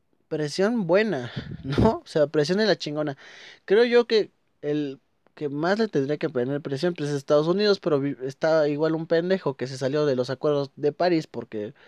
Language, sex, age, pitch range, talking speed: Spanish, male, 20-39, 125-155 Hz, 185 wpm